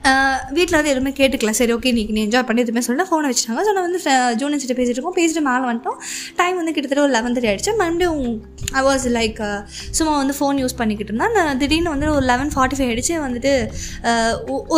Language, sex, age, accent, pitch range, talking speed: Tamil, female, 20-39, native, 245-315 Hz, 215 wpm